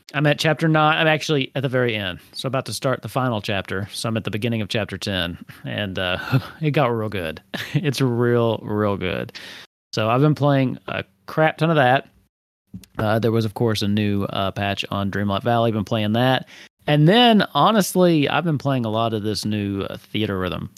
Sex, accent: male, American